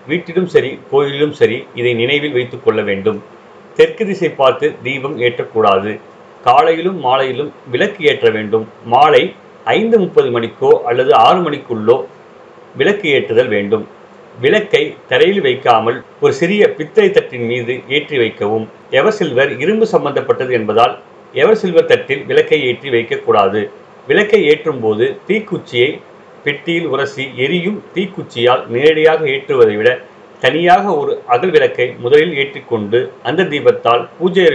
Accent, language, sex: native, Tamil, male